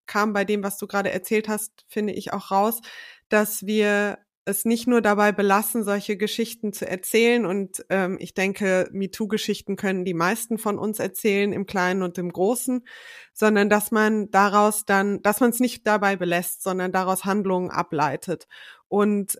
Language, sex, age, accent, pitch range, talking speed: German, female, 20-39, German, 190-215 Hz, 170 wpm